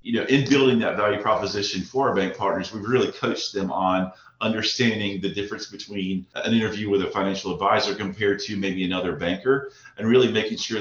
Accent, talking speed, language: American, 195 wpm, English